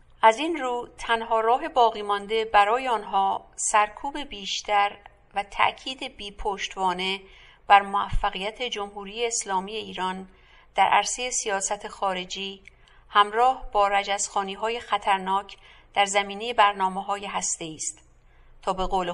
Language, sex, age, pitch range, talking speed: English, female, 50-69, 195-215 Hz, 120 wpm